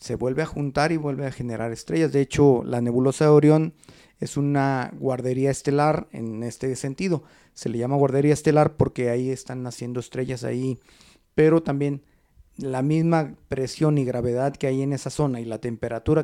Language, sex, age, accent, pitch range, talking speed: Spanish, male, 40-59, Mexican, 125-155 Hz, 175 wpm